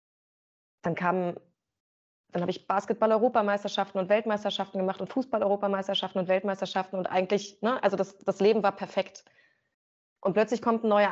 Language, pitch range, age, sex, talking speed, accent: German, 170-205 Hz, 20-39, female, 140 wpm, German